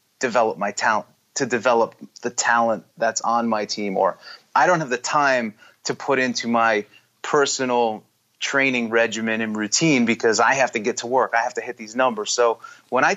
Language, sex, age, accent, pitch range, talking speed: English, male, 30-49, American, 115-135 Hz, 190 wpm